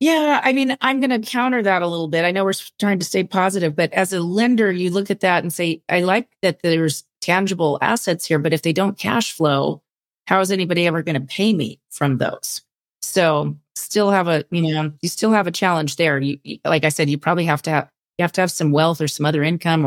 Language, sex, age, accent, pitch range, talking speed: English, female, 30-49, American, 150-190 Hz, 250 wpm